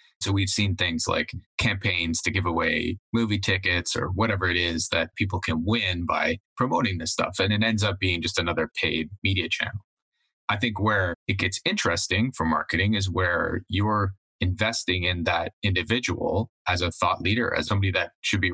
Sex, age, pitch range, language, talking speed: male, 20-39, 90-105 Hz, English, 185 wpm